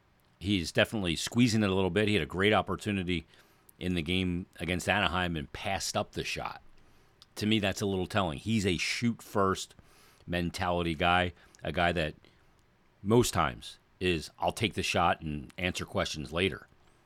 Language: English